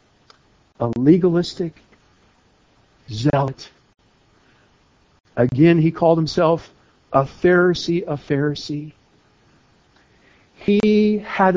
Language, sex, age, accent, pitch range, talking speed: English, male, 60-79, American, 165-245 Hz, 65 wpm